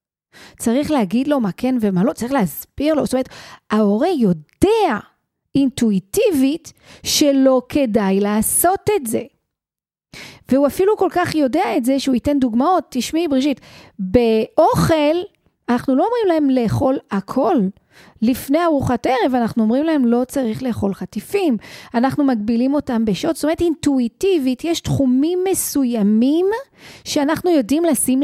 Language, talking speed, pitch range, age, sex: Hebrew, 130 wpm, 235-305 Hz, 40-59, female